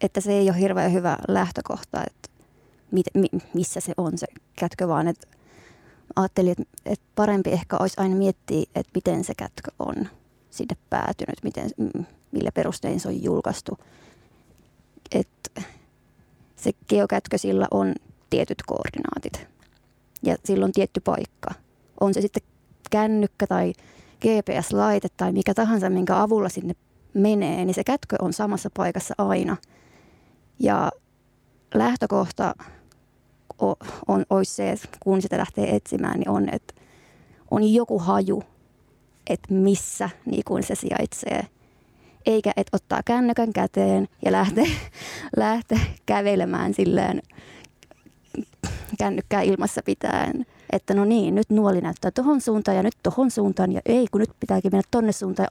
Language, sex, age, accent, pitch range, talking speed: Finnish, female, 20-39, native, 185-220 Hz, 130 wpm